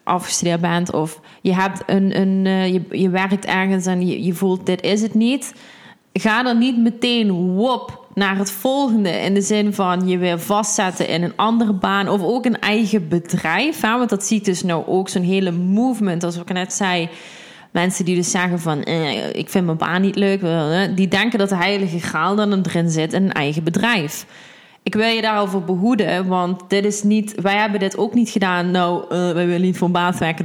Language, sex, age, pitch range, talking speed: Dutch, female, 20-39, 180-215 Hz, 210 wpm